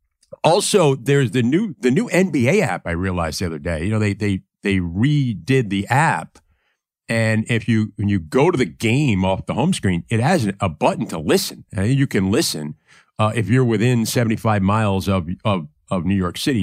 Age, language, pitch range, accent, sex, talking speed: 50-69, English, 95-130 Hz, American, male, 200 wpm